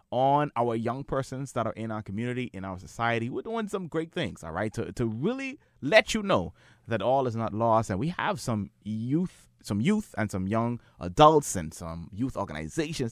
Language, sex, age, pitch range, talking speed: English, male, 20-39, 95-130 Hz, 205 wpm